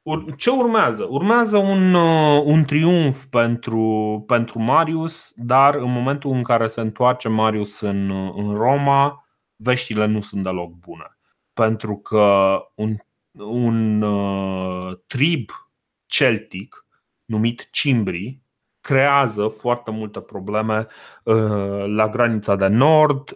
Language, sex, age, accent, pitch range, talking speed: Romanian, male, 30-49, native, 105-140 Hz, 115 wpm